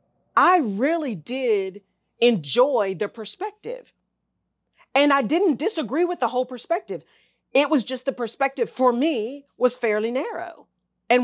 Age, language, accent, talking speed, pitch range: 40-59, English, American, 135 wpm, 200-260 Hz